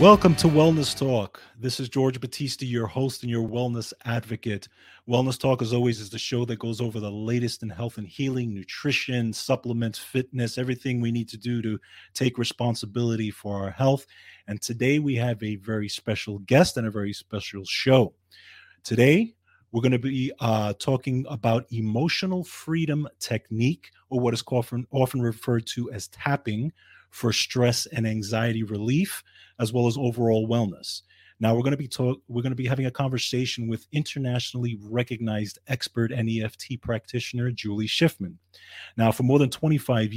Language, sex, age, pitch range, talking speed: English, male, 30-49, 110-130 Hz, 165 wpm